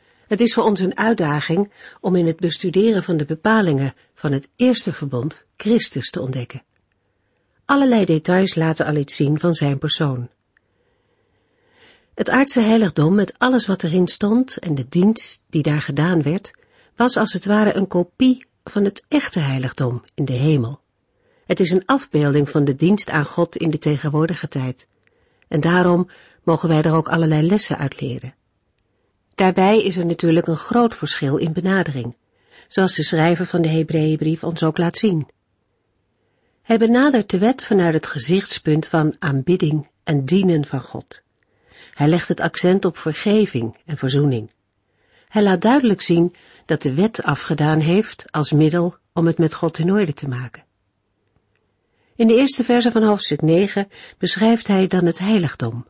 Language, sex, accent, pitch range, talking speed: Dutch, female, Dutch, 145-195 Hz, 160 wpm